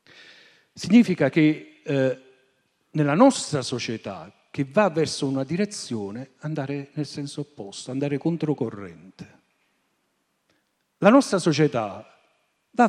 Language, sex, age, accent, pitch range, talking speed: Italian, male, 50-69, native, 140-190 Hz, 100 wpm